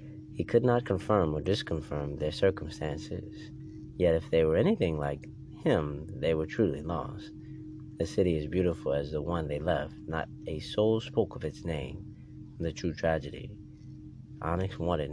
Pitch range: 75-110 Hz